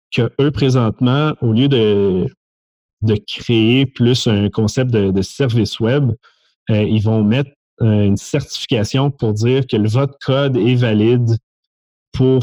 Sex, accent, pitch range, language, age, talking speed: male, Canadian, 100-120 Hz, French, 30-49, 140 wpm